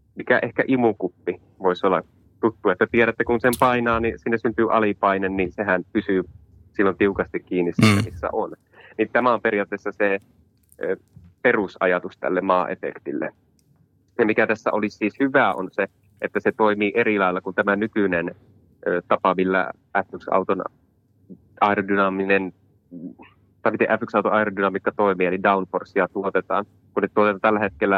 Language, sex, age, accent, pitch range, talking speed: Finnish, male, 20-39, native, 95-110 Hz, 130 wpm